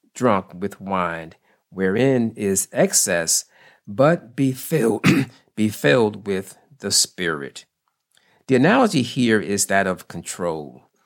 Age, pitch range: 50-69, 100-145 Hz